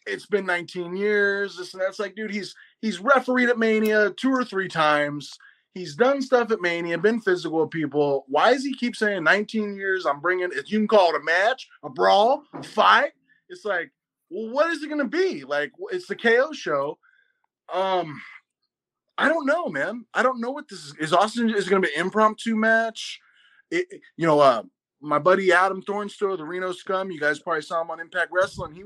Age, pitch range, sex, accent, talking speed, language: 20-39, 165-225 Hz, male, American, 210 wpm, English